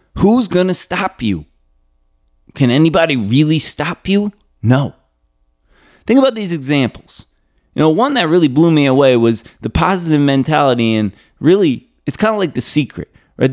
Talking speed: 155 wpm